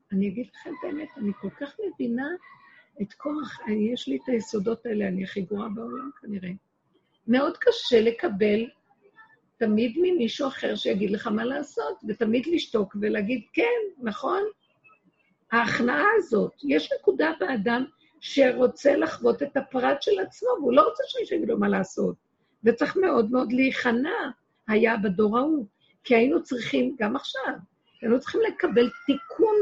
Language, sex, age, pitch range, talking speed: Hebrew, female, 50-69, 215-315 Hz, 145 wpm